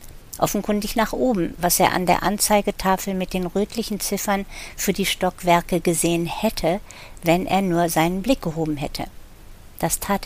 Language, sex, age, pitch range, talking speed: German, female, 50-69, 175-220 Hz, 150 wpm